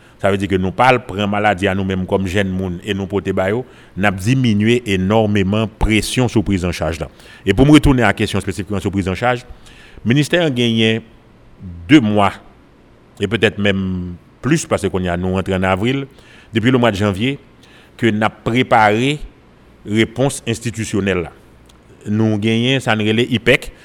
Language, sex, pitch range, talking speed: French, male, 100-125 Hz, 180 wpm